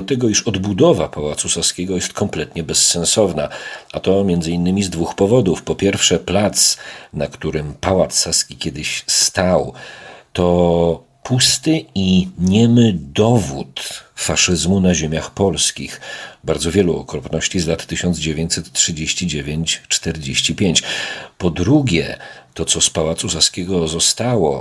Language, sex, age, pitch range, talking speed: Polish, male, 40-59, 80-100 Hz, 115 wpm